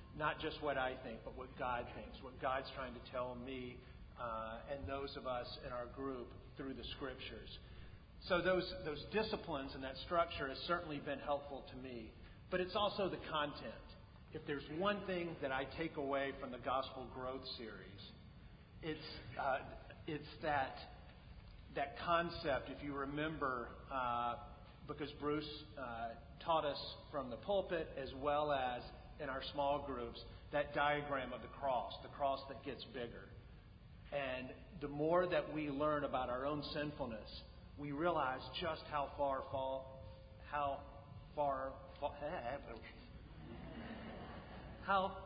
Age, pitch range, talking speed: 40-59, 125-150 Hz, 145 wpm